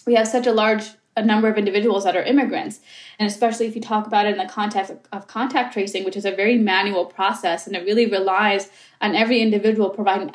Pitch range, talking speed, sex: 200-235 Hz, 225 wpm, female